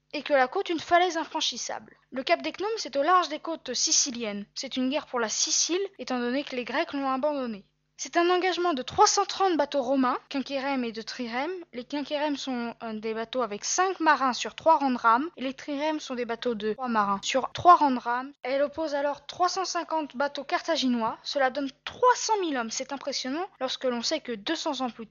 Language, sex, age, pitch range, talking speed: French, female, 20-39, 245-305 Hz, 210 wpm